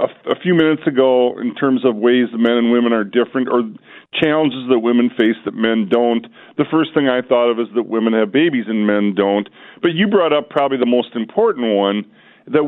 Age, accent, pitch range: 50-69, American, 120-175 Hz